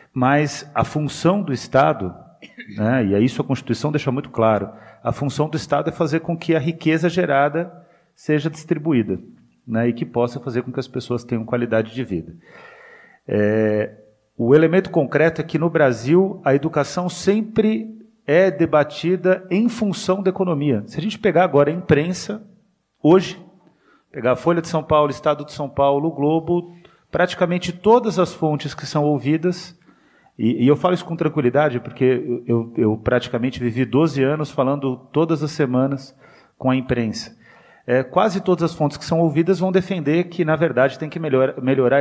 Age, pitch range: 40-59, 130-170 Hz